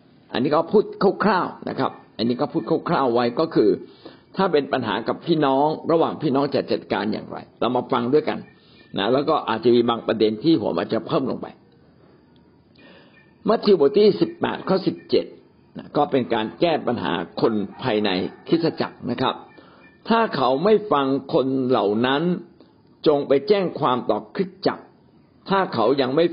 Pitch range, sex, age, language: 130-195 Hz, male, 60-79, Thai